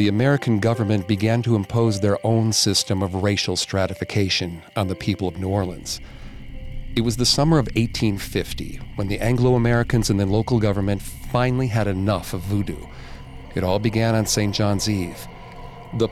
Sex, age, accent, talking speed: male, 40-59, American, 165 wpm